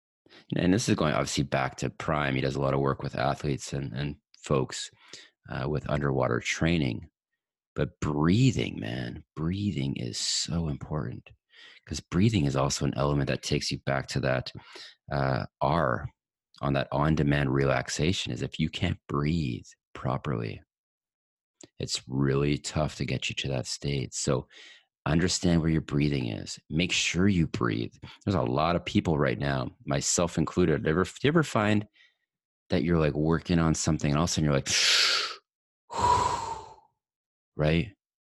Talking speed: 155 wpm